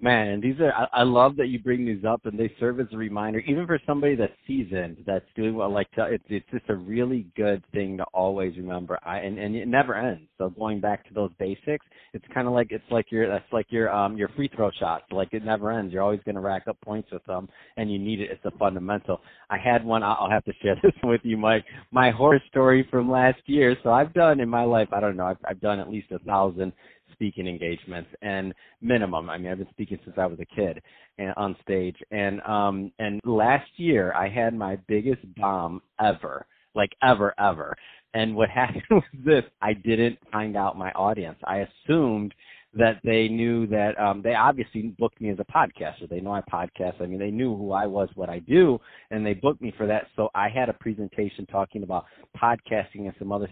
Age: 30-49